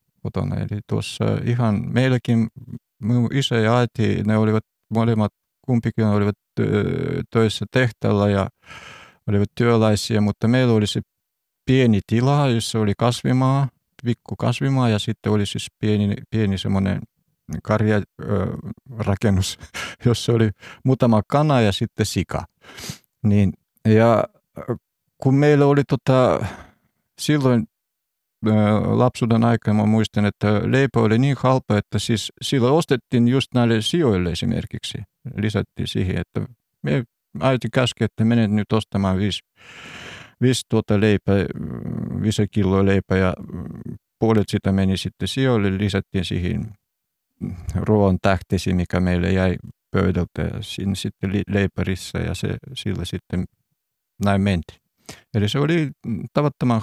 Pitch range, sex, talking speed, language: 100-120 Hz, male, 120 wpm, Finnish